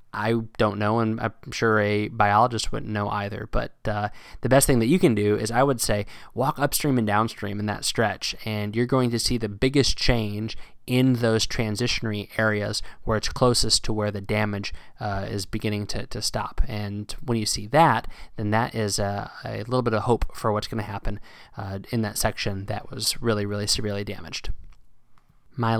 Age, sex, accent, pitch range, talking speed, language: 20-39, male, American, 105-125 Hz, 200 wpm, English